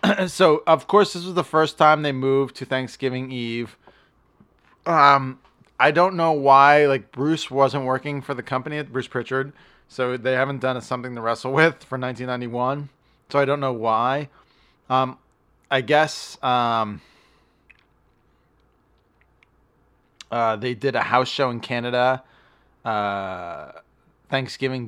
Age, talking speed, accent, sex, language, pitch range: 20-39, 135 wpm, American, male, English, 115-140 Hz